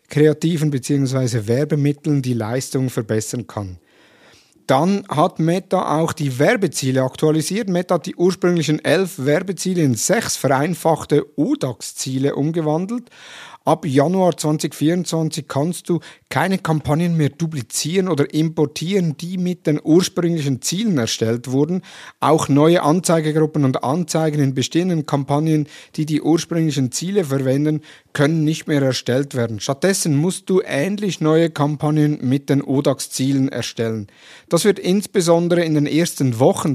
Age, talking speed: 50-69, 130 wpm